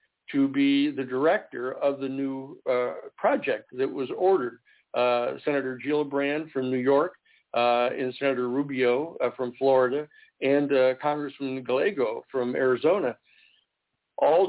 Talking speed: 135 wpm